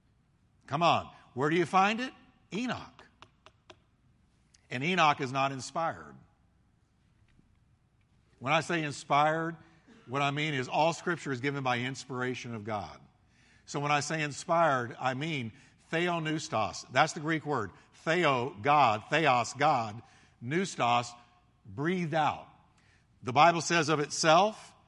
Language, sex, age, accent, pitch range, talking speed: English, male, 50-69, American, 125-180 Hz, 130 wpm